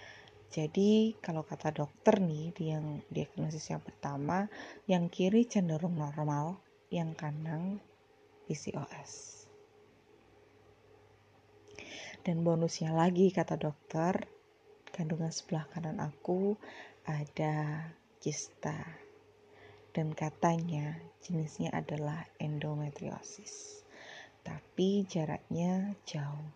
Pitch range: 150-195 Hz